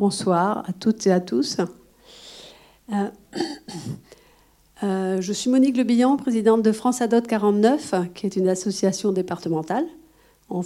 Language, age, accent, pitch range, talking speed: French, 50-69, French, 170-210 Hz, 130 wpm